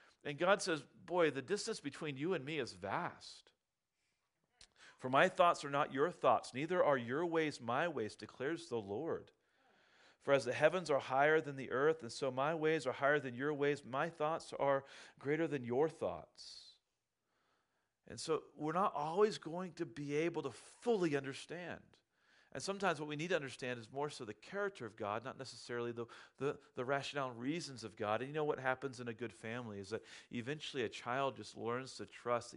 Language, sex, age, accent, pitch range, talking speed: English, male, 40-59, American, 115-150 Hz, 195 wpm